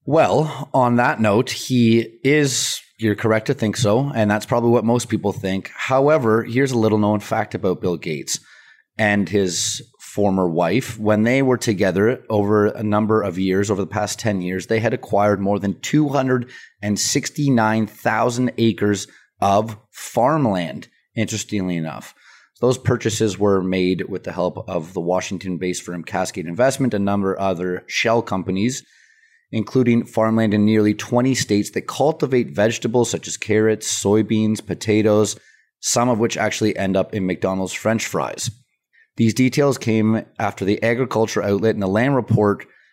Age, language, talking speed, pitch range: 30-49, English, 155 wpm, 100-120 Hz